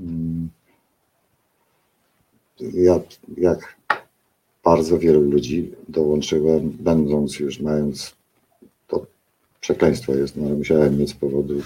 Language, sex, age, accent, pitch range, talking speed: Polish, male, 50-69, native, 75-90 Hz, 95 wpm